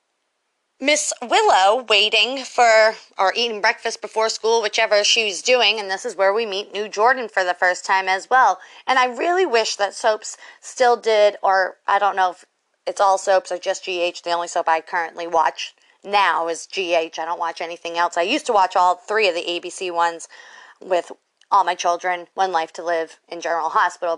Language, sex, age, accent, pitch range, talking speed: English, female, 30-49, American, 180-235 Hz, 200 wpm